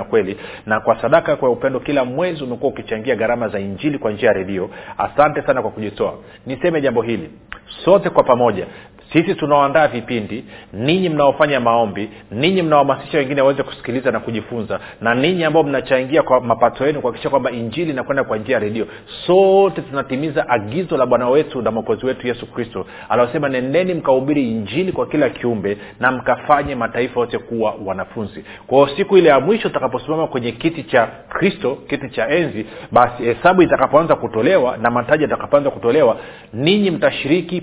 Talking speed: 165 wpm